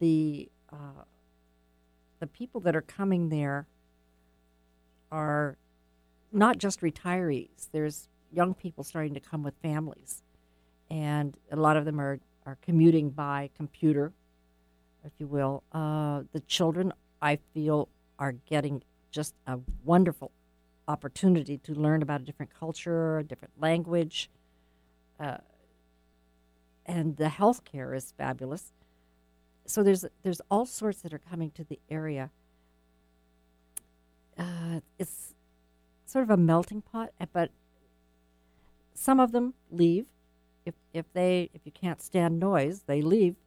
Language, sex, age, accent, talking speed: English, female, 50-69, American, 125 wpm